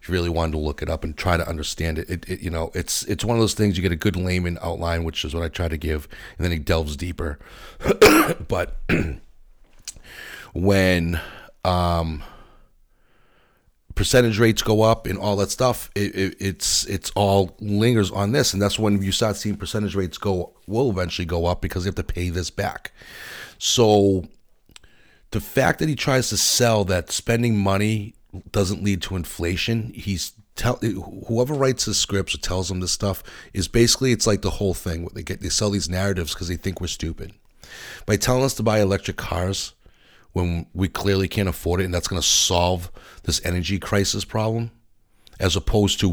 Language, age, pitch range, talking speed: English, 30-49, 85-105 Hz, 190 wpm